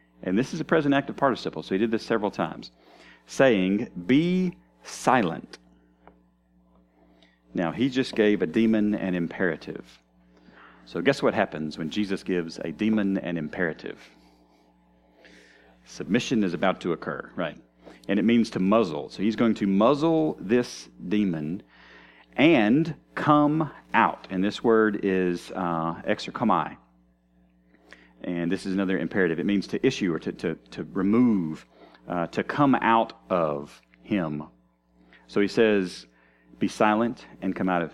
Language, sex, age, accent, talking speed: English, male, 40-59, American, 145 wpm